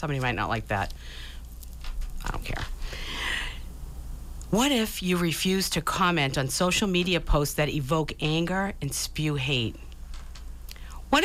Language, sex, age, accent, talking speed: English, female, 50-69, American, 135 wpm